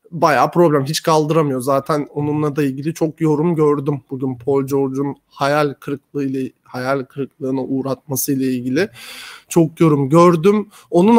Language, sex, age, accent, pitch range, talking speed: Turkish, male, 30-49, native, 145-180 Hz, 140 wpm